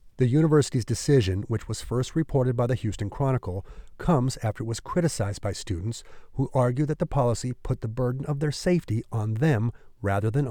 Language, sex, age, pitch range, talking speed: English, male, 40-59, 105-140 Hz, 190 wpm